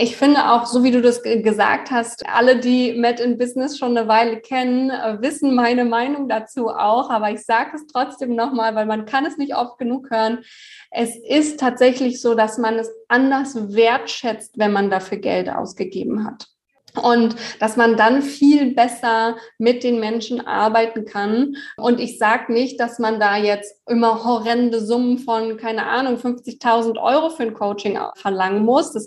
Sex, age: female, 20-39